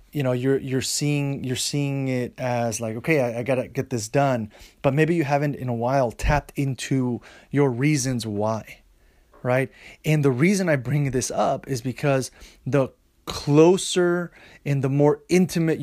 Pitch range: 120-145 Hz